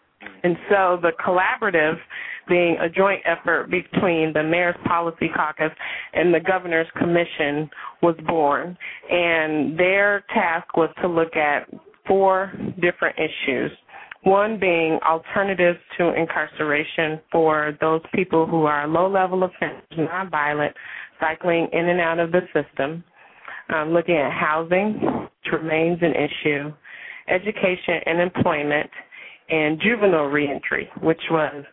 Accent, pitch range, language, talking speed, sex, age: American, 155-185 Hz, English, 125 wpm, female, 30-49